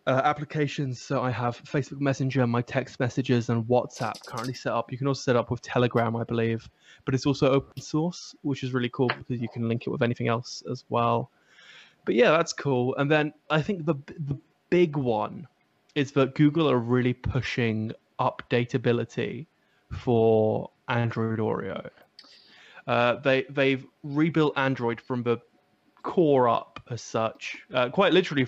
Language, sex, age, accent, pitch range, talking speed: English, male, 20-39, British, 120-140 Hz, 165 wpm